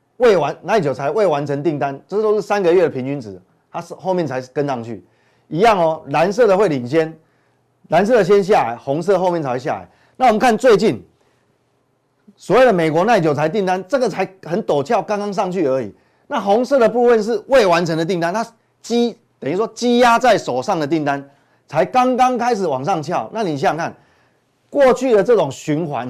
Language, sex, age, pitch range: Chinese, male, 30-49, 140-225 Hz